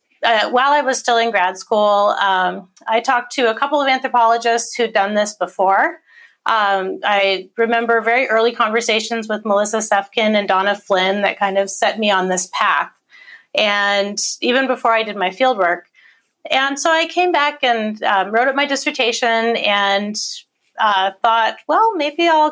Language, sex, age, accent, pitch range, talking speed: English, female, 30-49, American, 200-250 Hz, 170 wpm